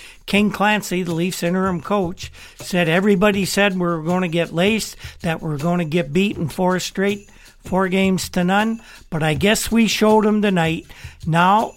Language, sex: English, male